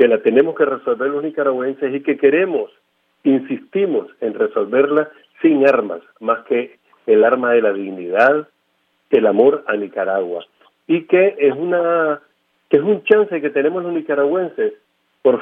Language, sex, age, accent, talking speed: English, male, 50-69, Argentinian, 150 wpm